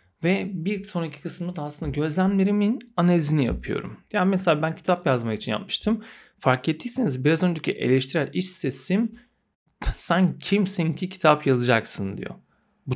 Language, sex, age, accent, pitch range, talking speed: Turkish, male, 40-59, native, 125-180 Hz, 140 wpm